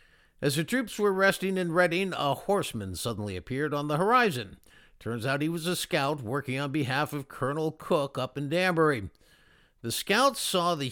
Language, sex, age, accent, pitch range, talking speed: English, male, 60-79, American, 130-175 Hz, 180 wpm